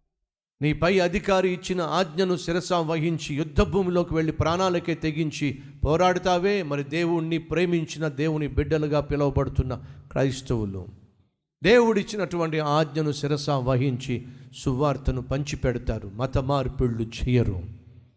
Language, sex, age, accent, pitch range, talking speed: Telugu, male, 50-69, native, 125-165 Hz, 95 wpm